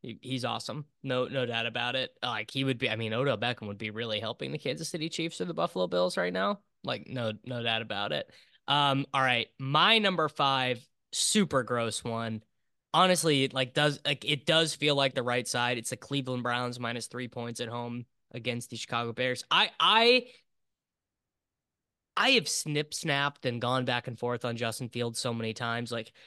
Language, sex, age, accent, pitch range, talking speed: English, male, 10-29, American, 120-160 Hz, 200 wpm